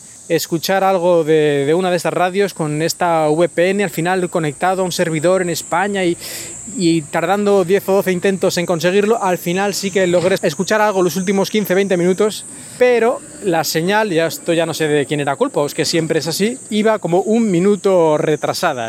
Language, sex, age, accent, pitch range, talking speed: Spanish, male, 20-39, Spanish, 160-190 Hz, 195 wpm